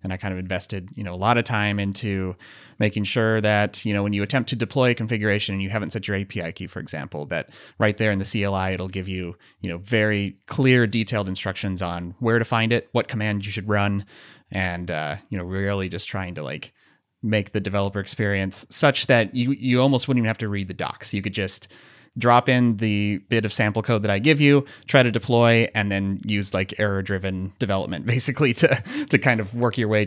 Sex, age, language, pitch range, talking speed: male, 30-49, English, 95-120 Hz, 230 wpm